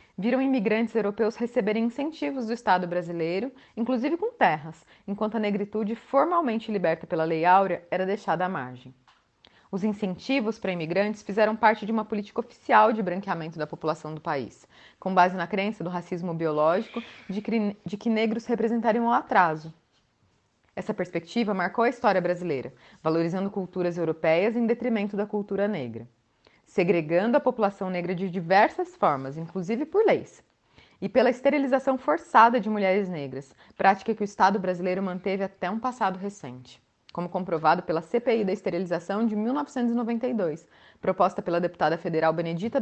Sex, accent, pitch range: female, Brazilian, 175-230 Hz